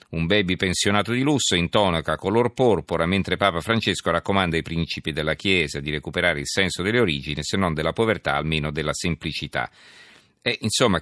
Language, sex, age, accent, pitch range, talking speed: Italian, male, 40-59, native, 80-95 Hz, 175 wpm